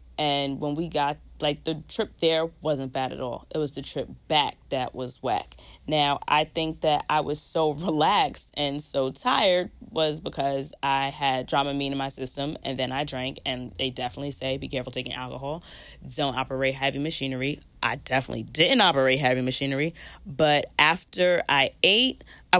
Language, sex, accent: English, female, American